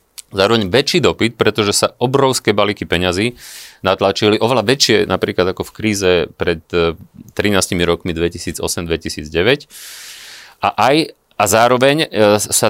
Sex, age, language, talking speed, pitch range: male, 30-49, Slovak, 115 wpm, 95-115 Hz